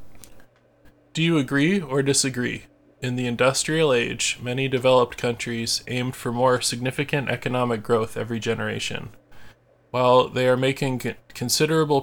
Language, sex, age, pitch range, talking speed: English, male, 20-39, 115-125 Hz, 125 wpm